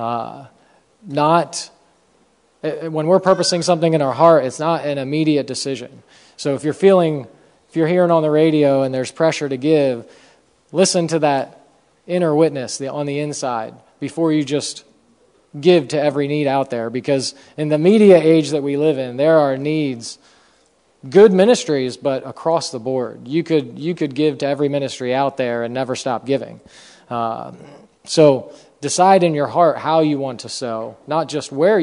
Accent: American